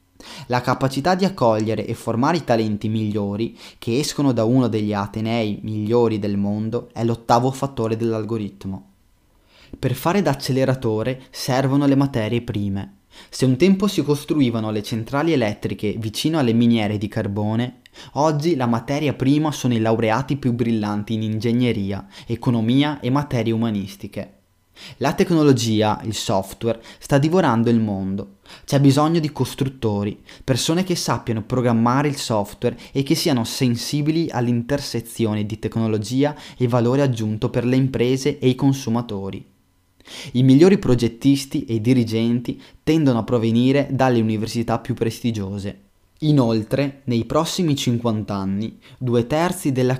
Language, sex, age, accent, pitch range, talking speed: Italian, male, 20-39, native, 110-135 Hz, 135 wpm